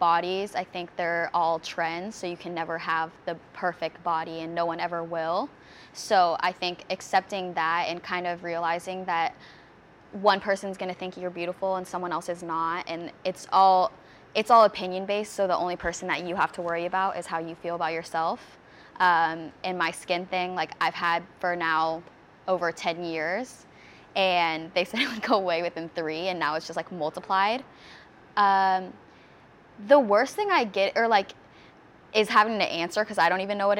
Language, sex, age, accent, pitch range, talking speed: English, female, 10-29, American, 170-195 Hz, 195 wpm